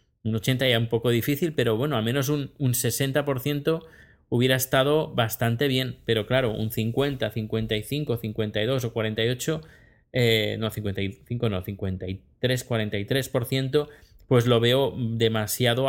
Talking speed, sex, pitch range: 130 wpm, male, 110-135 Hz